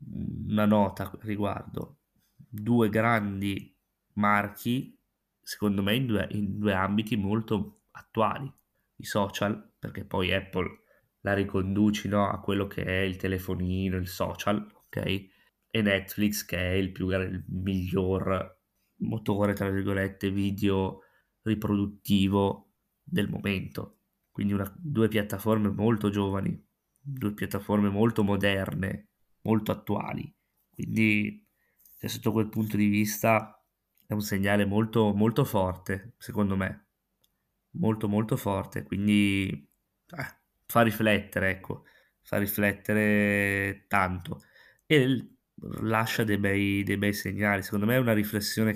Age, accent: 20-39, native